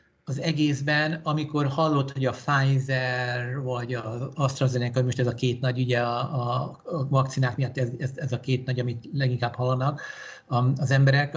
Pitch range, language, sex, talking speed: 130-155 Hz, Hungarian, male, 170 wpm